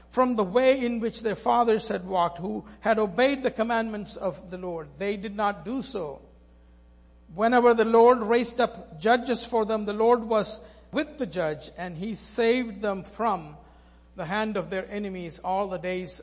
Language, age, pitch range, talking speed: English, 60-79, 170-230 Hz, 180 wpm